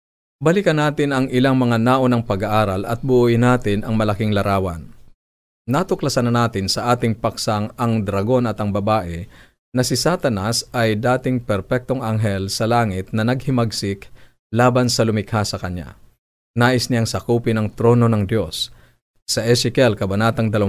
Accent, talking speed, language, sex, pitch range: native, 150 wpm, Filipino, male, 105-125 Hz